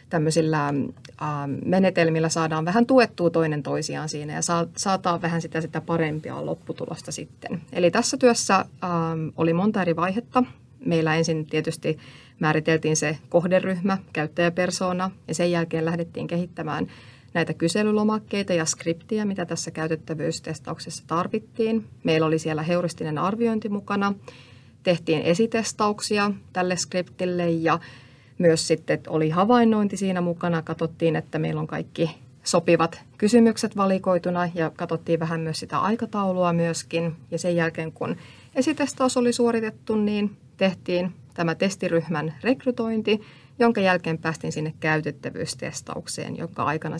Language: Finnish